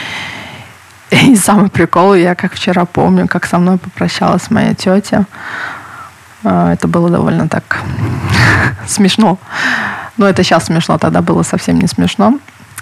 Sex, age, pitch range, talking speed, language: female, 20-39, 175-200 Hz, 130 wpm, Russian